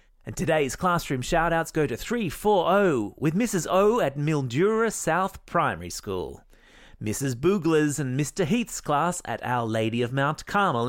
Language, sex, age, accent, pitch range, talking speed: English, male, 30-49, Australian, 120-180 Hz, 155 wpm